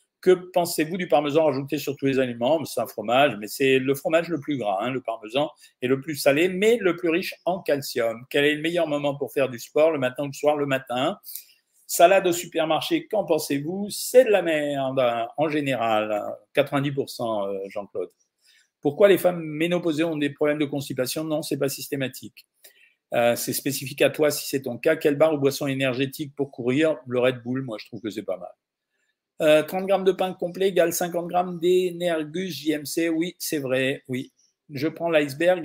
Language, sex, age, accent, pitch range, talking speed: French, male, 50-69, French, 135-170 Hz, 200 wpm